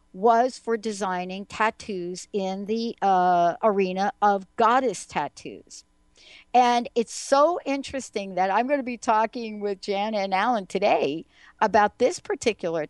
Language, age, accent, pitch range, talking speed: English, 60-79, American, 185-240 Hz, 135 wpm